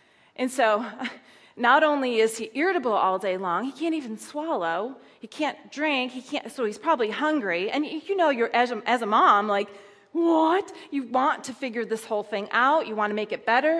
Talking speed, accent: 210 wpm, American